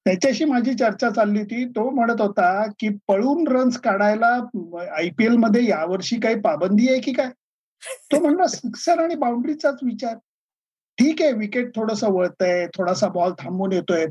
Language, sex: Marathi, male